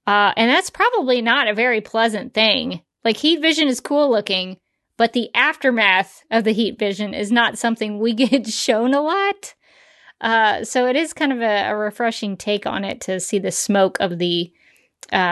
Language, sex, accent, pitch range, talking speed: English, female, American, 195-235 Hz, 190 wpm